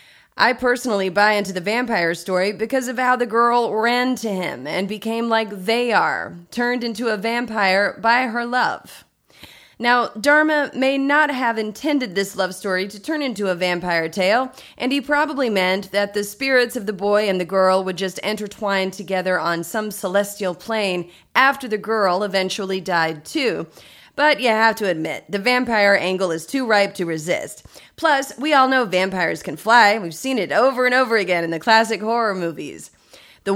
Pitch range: 190-245 Hz